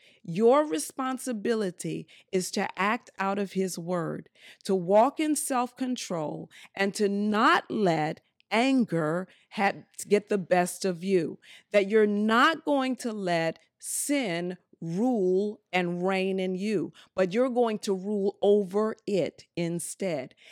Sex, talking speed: female, 130 wpm